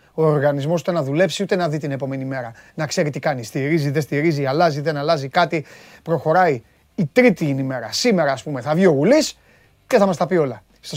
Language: Greek